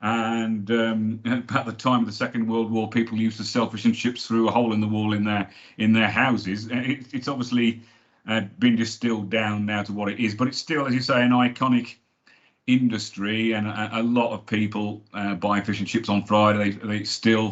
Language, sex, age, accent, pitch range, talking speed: English, male, 40-59, British, 105-125 Hz, 225 wpm